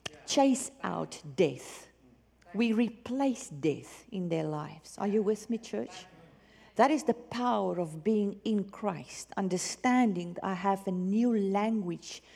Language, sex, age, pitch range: English, female, 50-69, 170-225 Hz